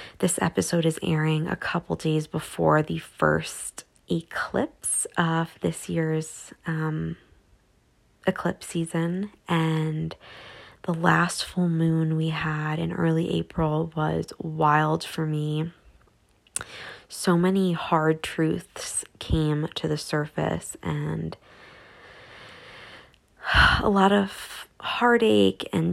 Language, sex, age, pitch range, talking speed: English, female, 20-39, 150-165 Hz, 105 wpm